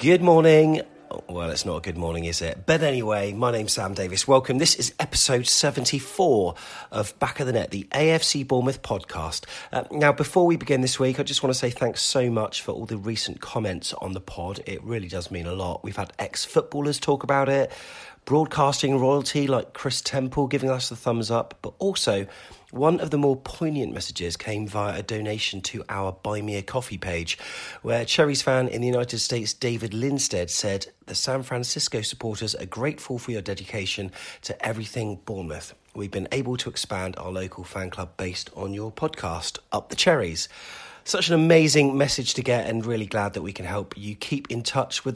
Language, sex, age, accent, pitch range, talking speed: English, male, 40-59, British, 100-140 Hz, 200 wpm